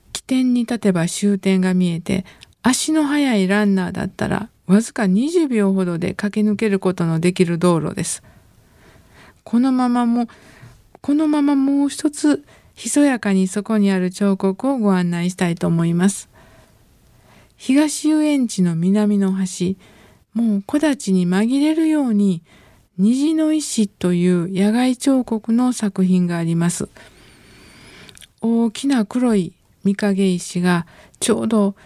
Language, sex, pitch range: Japanese, female, 185-245 Hz